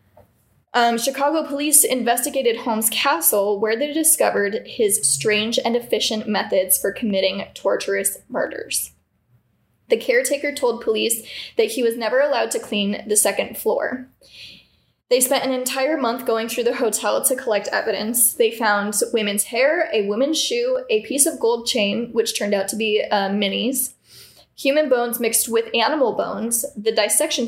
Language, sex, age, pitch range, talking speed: English, female, 10-29, 205-270 Hz, 155 wpm